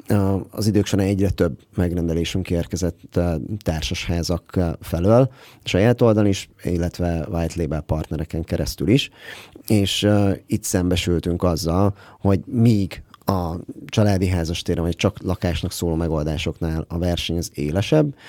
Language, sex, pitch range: Hungarian, male, 85-105 Hz